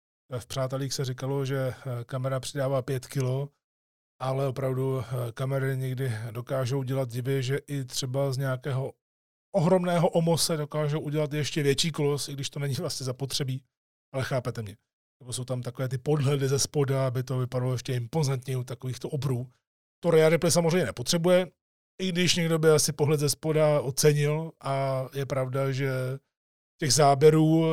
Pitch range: 130-150 Hz